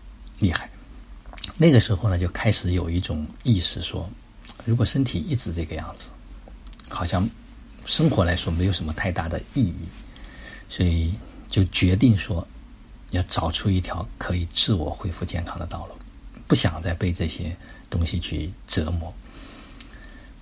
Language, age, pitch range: Chinese, 50-69, 85-105 Hz